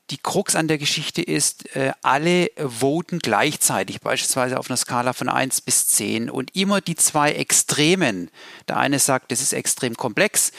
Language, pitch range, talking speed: German, 130-165 Hz, 165 wpm